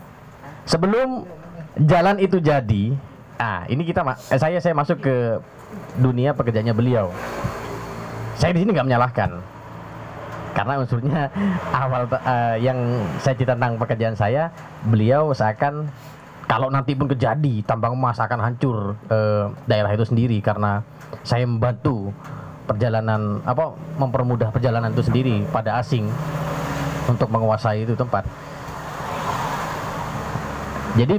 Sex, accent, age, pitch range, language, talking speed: male, native, 20-39, 110-145 Hz, Indonesian, 115 wpm